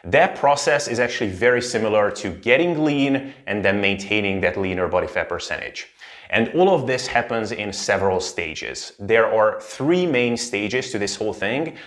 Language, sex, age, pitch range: English, male, 30-49, 100-120 Hz